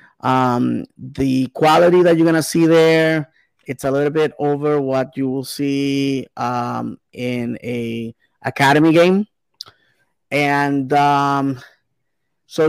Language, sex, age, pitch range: English, male, 30-49, 125-150 Hz